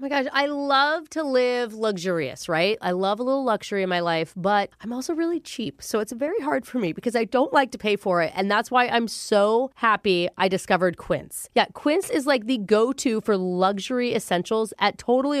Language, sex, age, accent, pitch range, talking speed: English, female, 30-49, American, 200-295 Hz, 220 wpm